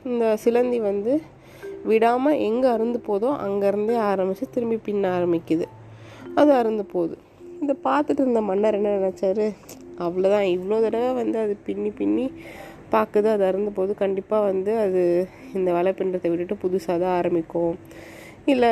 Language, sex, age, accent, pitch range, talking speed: Tamil, female, 20-39, native, 175-230 Hz, 135 wpm